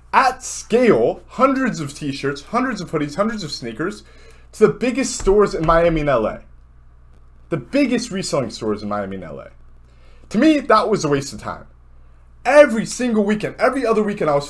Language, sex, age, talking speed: English, male, 30-49, 180 wpm